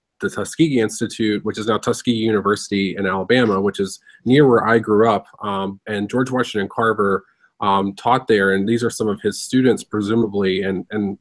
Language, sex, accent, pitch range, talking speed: English, male, American, 105-125 Hz, 185 wpm